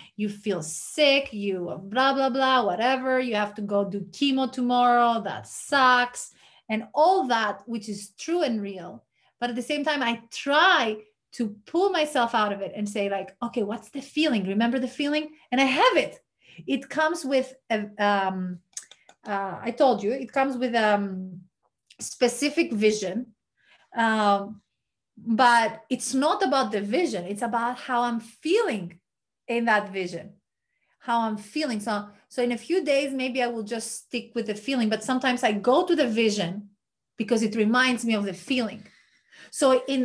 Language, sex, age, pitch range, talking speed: Greek, female, 30-49, 210-265 Hz, 170 wpm